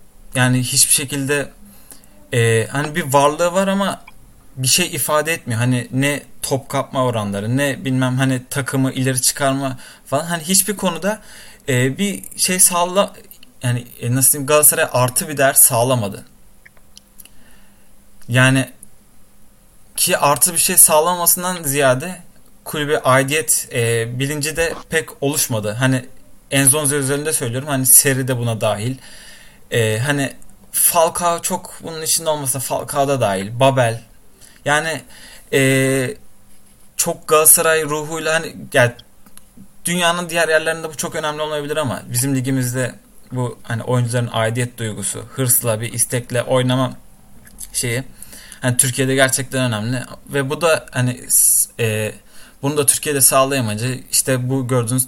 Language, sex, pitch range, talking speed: Turkish, male, 120-155 Hz, 125 wpm